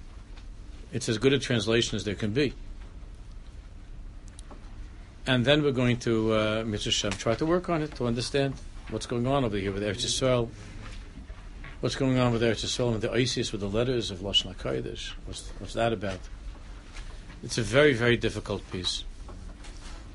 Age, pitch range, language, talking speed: 60-79, 95-125 Hz, English, 155 wpm